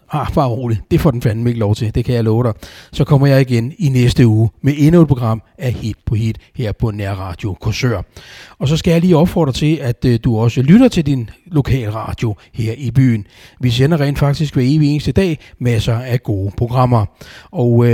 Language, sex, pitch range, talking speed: Danish, male, 115-160 Hz, 215 wpm